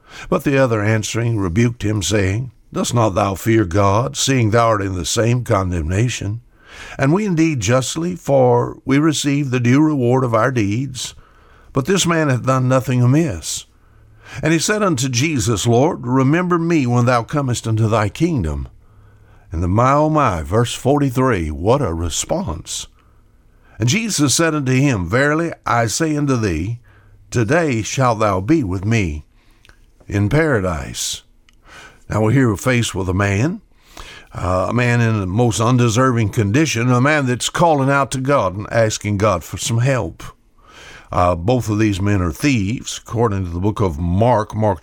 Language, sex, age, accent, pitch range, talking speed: English, male, 60-79, American, 105-140 Hz, 165 wpm